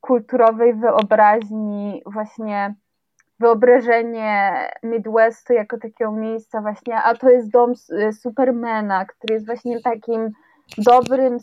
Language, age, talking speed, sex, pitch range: Polish, 20-39, 100 wpm, female, 215-260 Hz